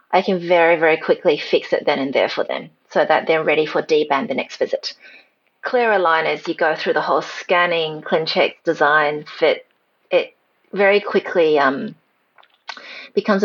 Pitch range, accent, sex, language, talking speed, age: 165-225 Hz, Australian, female, English, 165 wpm, 30-49